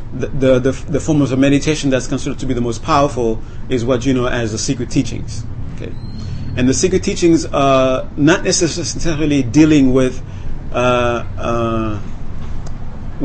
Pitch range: 115-140 Hz